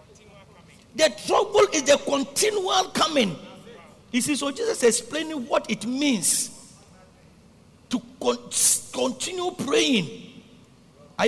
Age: 50-69